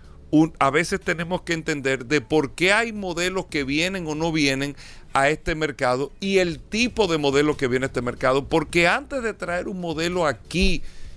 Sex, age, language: male, 40-59, Spanish